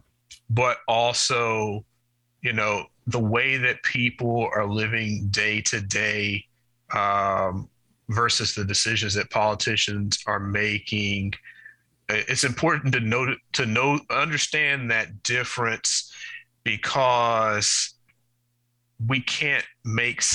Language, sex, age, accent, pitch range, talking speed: English, male, 30-49, American, 105-120 Hz, 100 wpm